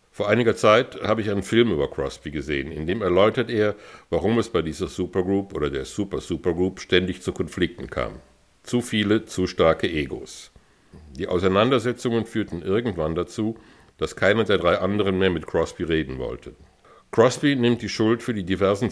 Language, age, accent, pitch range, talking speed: German, 60-79, German, 90-110 Hz, 170 wpm